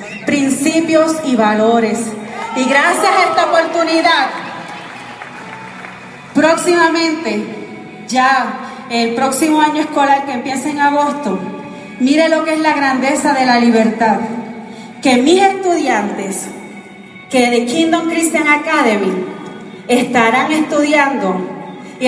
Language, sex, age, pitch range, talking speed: Spanish, female, 30-49, 255-320 Hz, 105 wpm